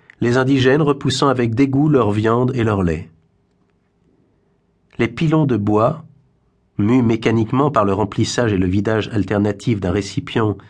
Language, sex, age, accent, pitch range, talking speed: French, male, 50-69, French, 100-135 Hz, 140 wpm